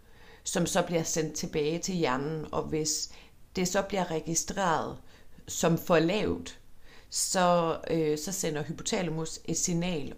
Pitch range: 125-180 Hz